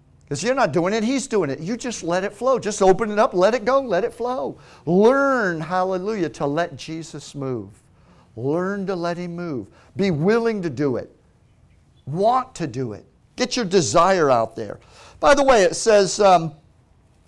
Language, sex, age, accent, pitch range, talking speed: English, male, 50-69, American, 140-205 Hz, 190 wpm